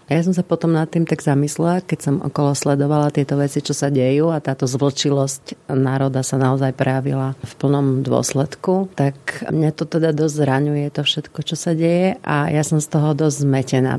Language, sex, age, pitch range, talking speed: Slovak, female, 40-59, 130-150 Hz, 195 wpm